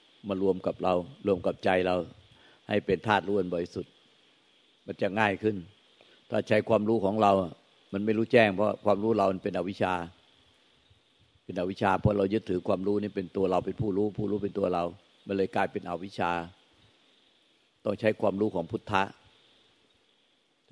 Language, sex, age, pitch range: Thai, male, 60-79, 95-110 Hz